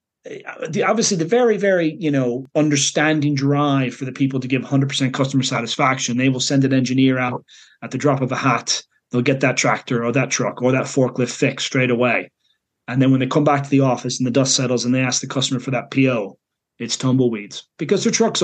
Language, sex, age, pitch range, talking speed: English, male, 30-49, 125-145 Hz, 220 wpm